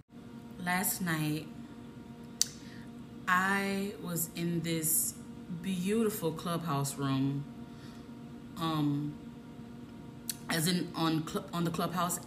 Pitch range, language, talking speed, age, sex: 150-180 Hz, English, 85 wpm, 20-39, female